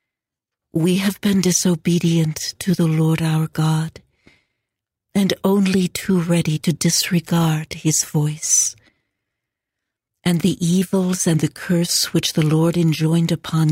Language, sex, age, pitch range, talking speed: English, female, 60-79, 160-185 Hz, 120 wpm